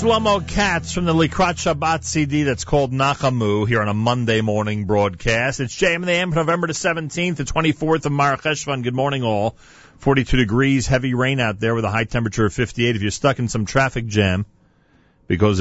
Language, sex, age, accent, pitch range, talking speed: English, male, 40-59, American, 105-140 Hz, 190 wpm